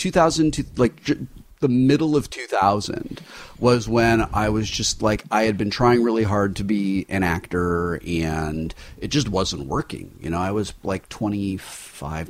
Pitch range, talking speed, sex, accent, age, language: 90-115 Hz, 160 wpm, male, American, 30-49, English